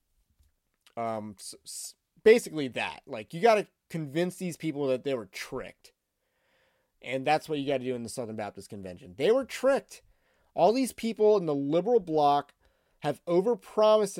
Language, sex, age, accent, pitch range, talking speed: English, male, 30-49, American, 135-175 Hz, 160 wpm